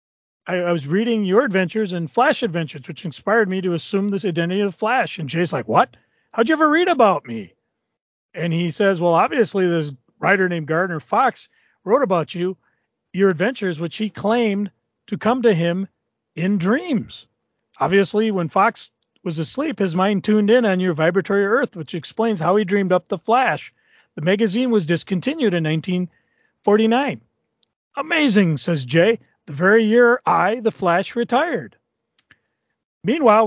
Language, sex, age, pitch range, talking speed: English, male, 40-59, 170-215 Hz, 160 wpm